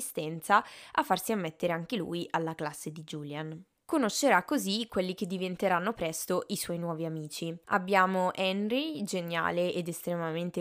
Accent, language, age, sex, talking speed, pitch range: native, Italian, 10-29, female, 135 wpm, 170-205 Hz